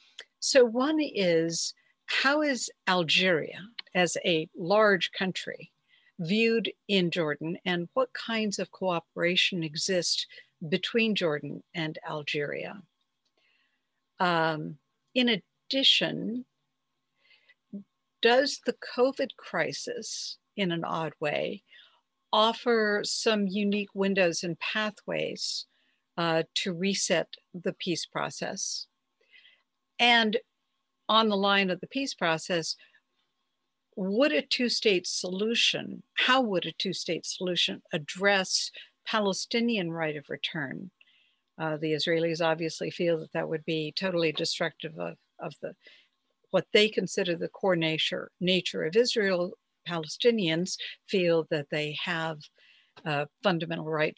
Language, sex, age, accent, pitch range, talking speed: English, female, 60-79, American, 165-230 Hz, 110 wpm